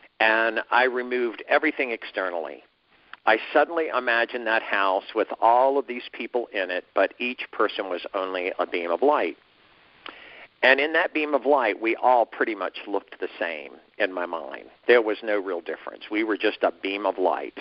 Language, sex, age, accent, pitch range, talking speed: English, male, 50-69, American, 100-140 Hz, 185 wpm